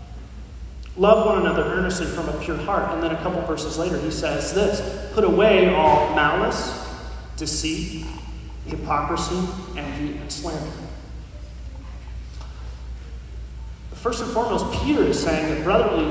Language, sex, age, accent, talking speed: English, male, 30-49, American, 125 wpm